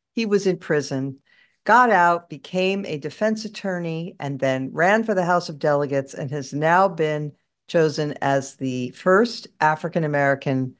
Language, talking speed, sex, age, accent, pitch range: English, 150 wpm, female, 50-69, American, 140-195 Hz